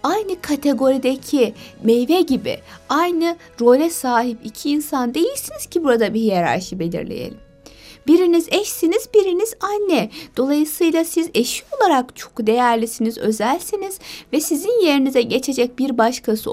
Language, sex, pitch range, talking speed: Turkish, female, 225-310 Hz, 115 wpm